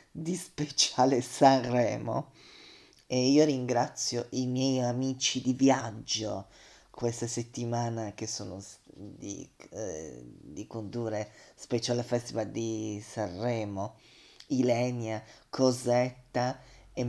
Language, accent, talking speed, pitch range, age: Italian, native, 90 wpm, 115-140 Hz, 30-49